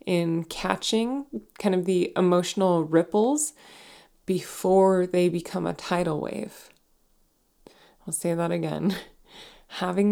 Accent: American